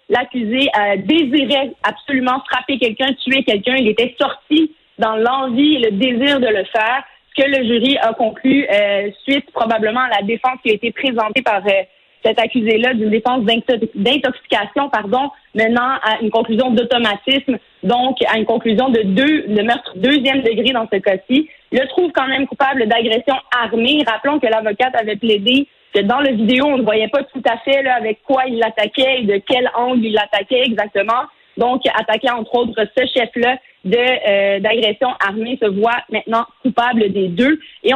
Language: French